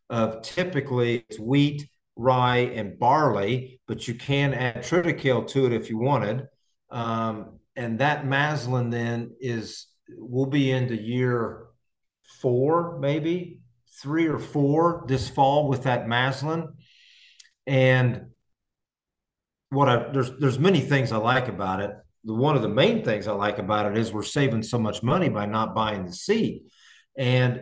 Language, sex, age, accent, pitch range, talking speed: English, male, 50-69, American, 120-150 Hz, 150 wpm